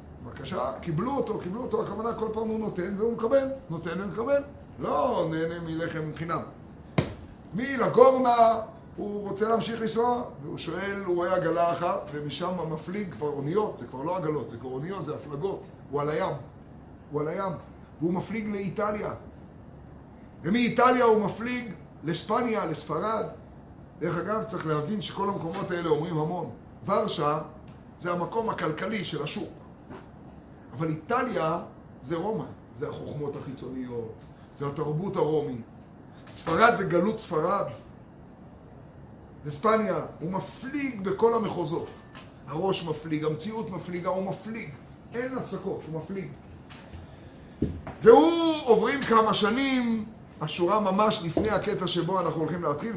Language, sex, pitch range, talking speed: Hebrew, male, 155-220 Hz, 130 wpm